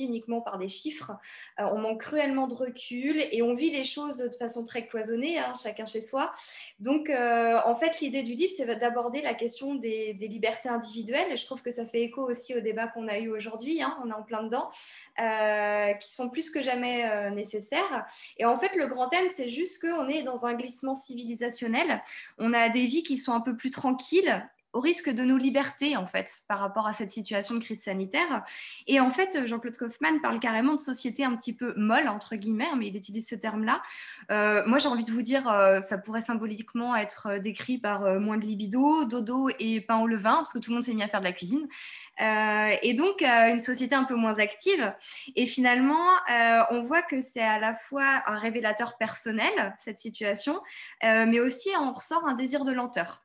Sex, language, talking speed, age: female, French, 215 wpm, 20-39